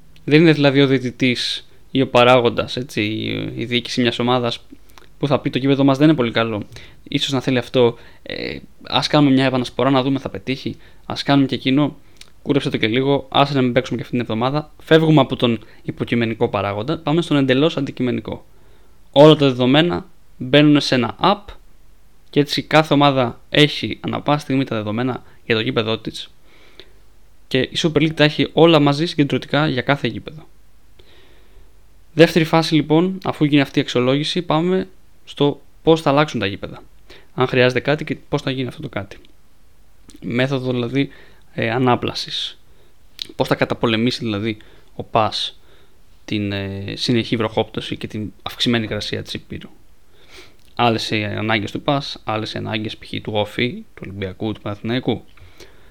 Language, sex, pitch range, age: Greek, male, 110-145 Hz, 20-39